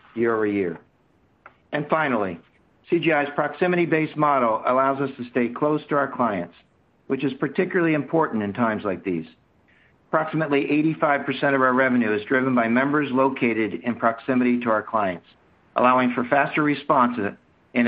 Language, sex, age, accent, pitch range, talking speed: English, male, 50-69, American, 115-145 Hz, 150 wpm